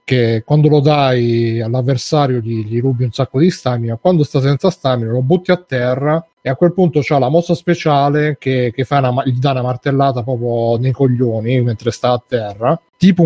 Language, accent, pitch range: Italian, native, 120-140 Hz